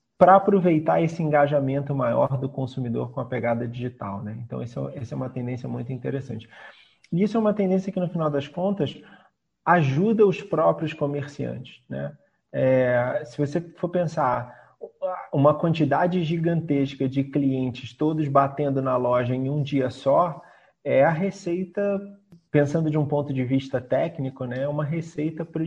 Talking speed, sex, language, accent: 150 wpm, male, Portuguese, Brazilian